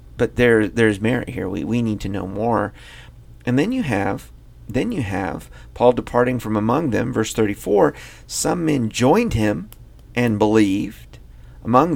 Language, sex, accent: English, male, American